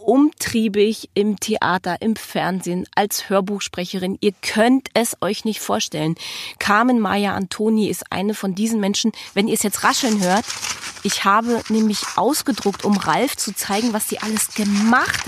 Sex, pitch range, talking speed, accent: female, 190-235 Hz, 155 wpm, German